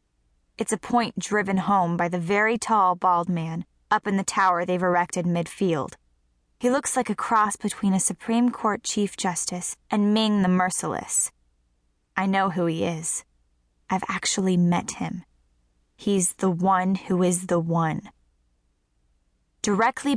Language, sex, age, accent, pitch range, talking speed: English, female, 10-29, American, 155-220 Hz, 150 wpm